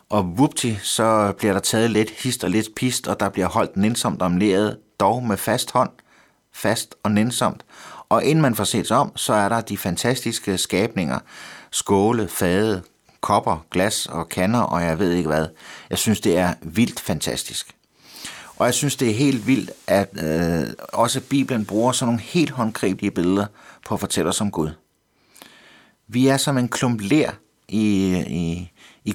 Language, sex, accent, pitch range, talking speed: Danish, male, native, 95-120 Hz, 175 wpm